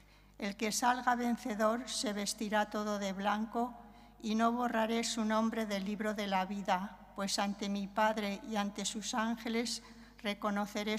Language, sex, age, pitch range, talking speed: English, female, 60-79, 200-230 Hz, 155 wpm